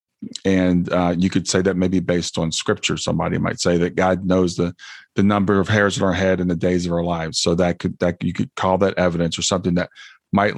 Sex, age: male, 40-59